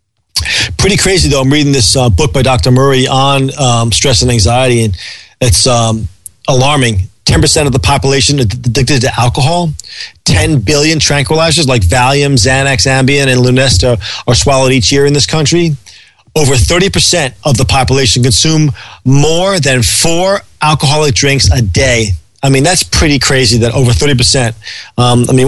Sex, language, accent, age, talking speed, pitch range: male, English, American, 40-59, 160 wpm, 115-145 Hz